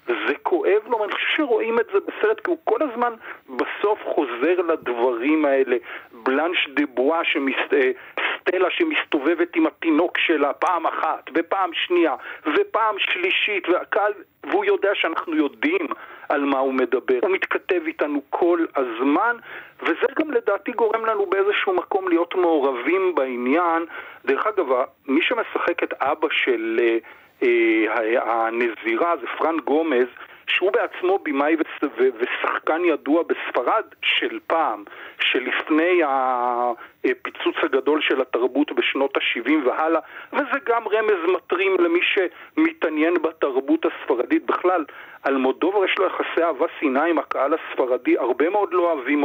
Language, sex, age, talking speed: Hebrew, male, 40-59, 125 wpm